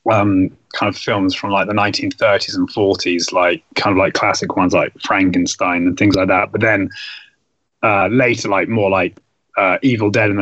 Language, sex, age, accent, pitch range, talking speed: English, male, 20-39, British, 110-135 Hz, 190 wpm